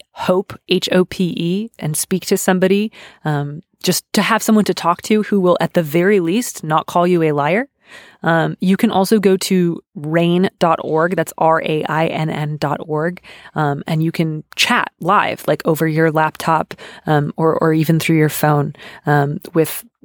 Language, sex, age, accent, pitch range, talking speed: English, female, 20-39, American, 155-180 Hz, 165 wpm